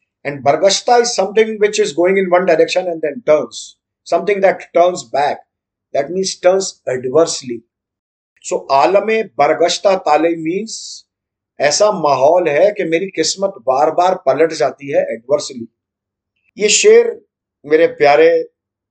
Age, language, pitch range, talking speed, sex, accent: 50-69, Hindi, 140-195 Hz, 130 wpm, male, native